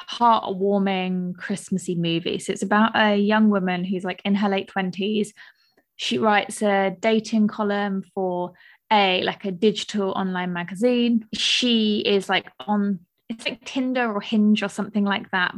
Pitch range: 190-215 Hz